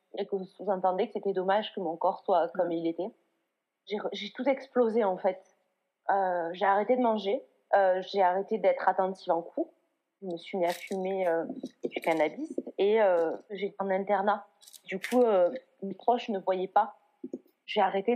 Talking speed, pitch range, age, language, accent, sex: 185 wpm, 185-225 Hz, 30-49, French, French, female